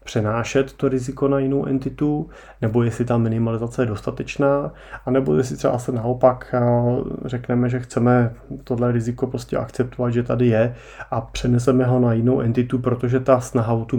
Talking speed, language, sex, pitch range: 165 wpm, Czech, male, 110-120 Hz